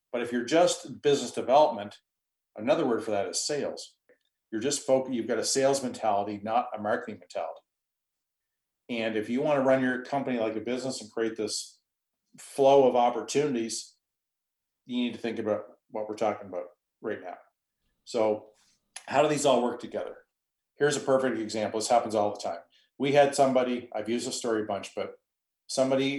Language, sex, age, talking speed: English, male, 40-59, 180 wpm